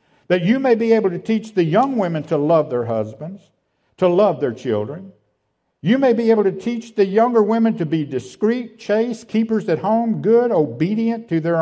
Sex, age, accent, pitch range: male, 60-79, American, 140-210 Hz